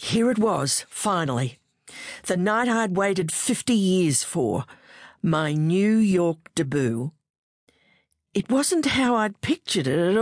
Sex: female